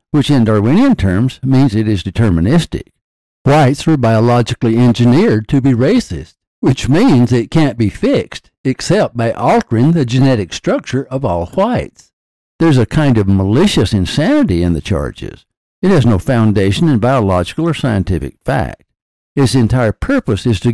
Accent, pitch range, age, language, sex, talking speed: American, 105-135 Hz, 60-79, English, male, 155 wpm